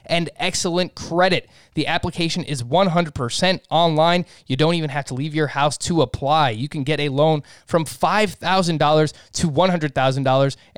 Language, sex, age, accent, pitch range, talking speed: English, male, 20-39, American, 135-160 Hz, 150 wpm